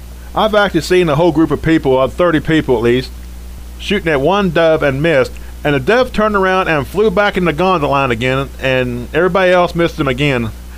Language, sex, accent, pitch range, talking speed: English, male, American, 110-170 Hz, 205 wpm